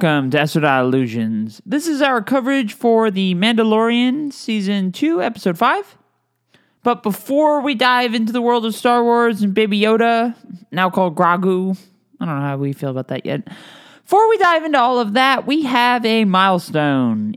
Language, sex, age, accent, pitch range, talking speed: English, male, 20-39, American, 140-230 Hz, 175 wpm